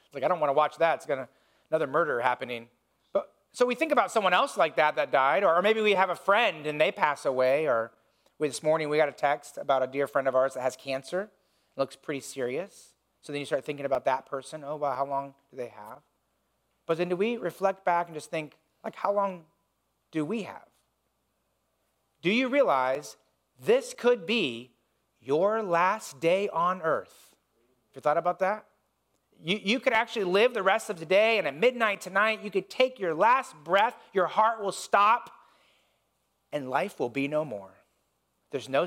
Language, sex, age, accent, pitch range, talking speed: English, male, 40-59, American, 135-200 Hz, 205 wpm